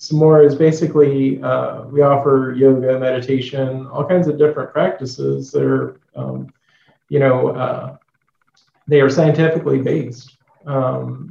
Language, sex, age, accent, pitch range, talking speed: English, male, 40-59, American, 125-145 Hz, 135 wpm